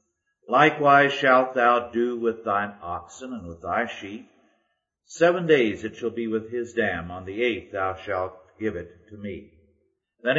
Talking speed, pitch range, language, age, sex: 170 wpm, 105-135 Hz, English, 50-69, male